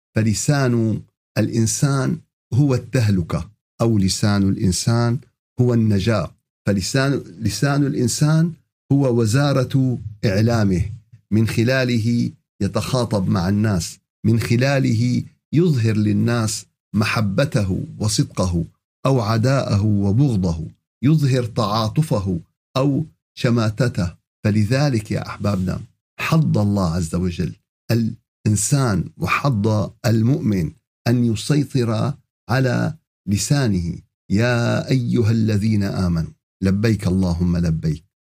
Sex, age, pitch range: male, 50-69, 100-130 Hz